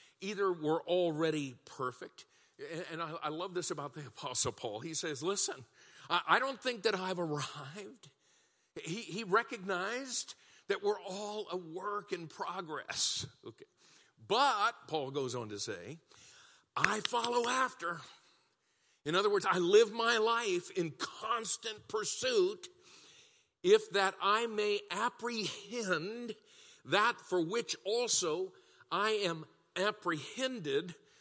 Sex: male